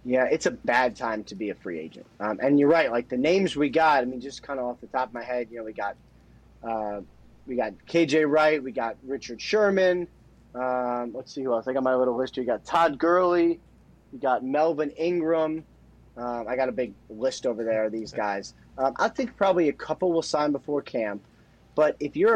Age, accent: 30-49, American